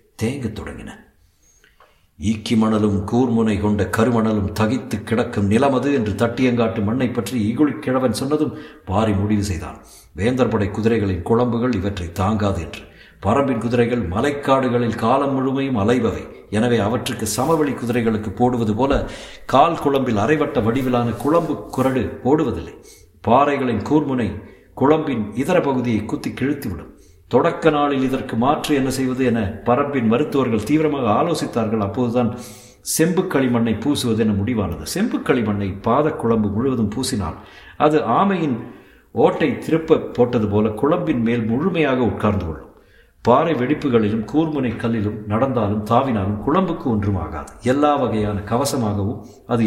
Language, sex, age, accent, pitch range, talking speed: Tamil, male, 60-79, native, 105-135 Hz, 110 wpm